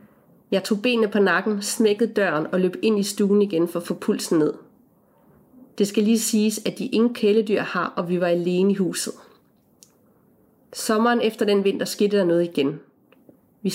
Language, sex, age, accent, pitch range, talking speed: Danish, female, 30-49, native, 190-230 Hz, 185 wpm